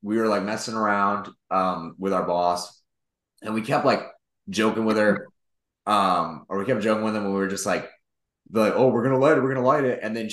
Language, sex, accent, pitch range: English, male, American, 110-150 Hz